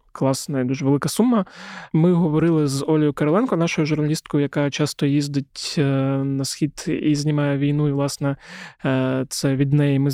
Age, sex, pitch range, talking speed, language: 20-39, male, 135-155 Hz, 155 wpm, Ukrainian